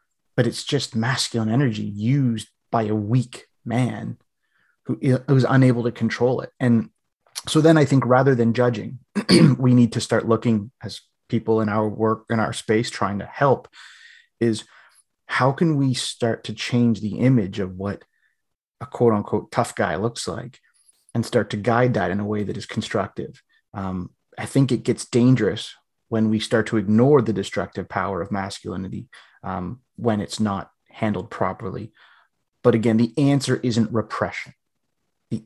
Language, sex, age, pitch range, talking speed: English, male, 30-49, 110-125 Hz, 165 wpm